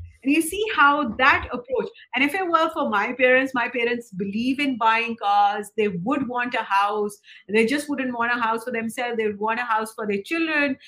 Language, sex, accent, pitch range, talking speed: English, female, Indian, 225-285 Hz, 220 wpm